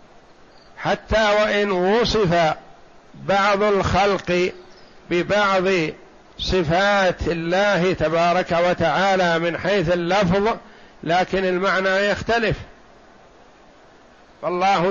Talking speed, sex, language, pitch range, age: 70 wpm, male, Arabic, 175-210 Hz, 60-79